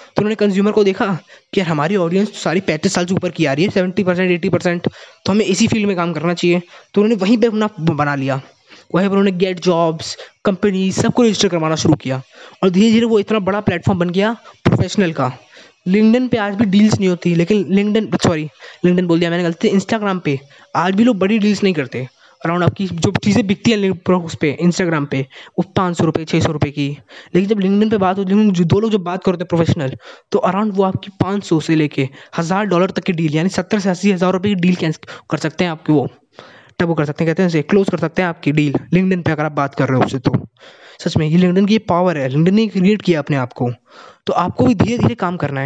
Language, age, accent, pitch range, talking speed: Hindi, 20-39, native, 160-205 Hz, 245 wpm